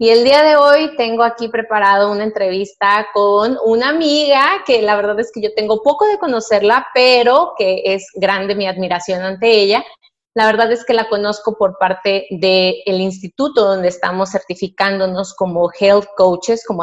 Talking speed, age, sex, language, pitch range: 175 wpm, 30-49, female, Spanish, 195-250 Hz